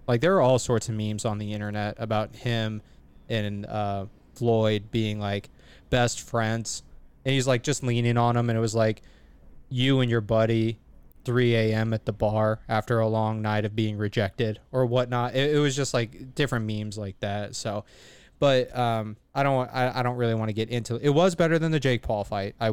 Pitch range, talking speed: 105-125 Hz, 210 wpm